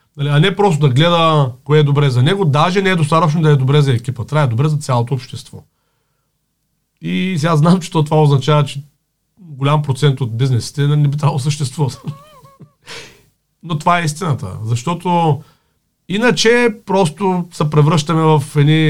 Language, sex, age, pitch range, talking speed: Bulgarian, male, 40-59, 130-175 Hz, 165 wpm